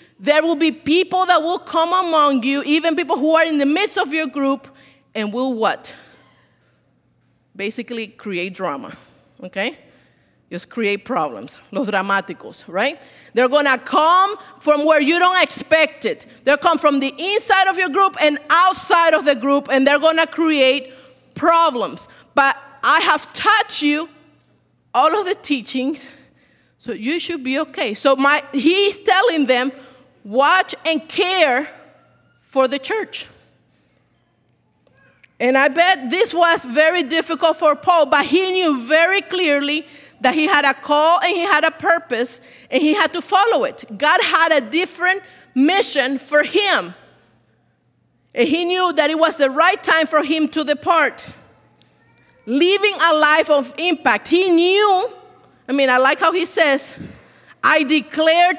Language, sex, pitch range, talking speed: English, female, 270-345 Hz, 155 wpm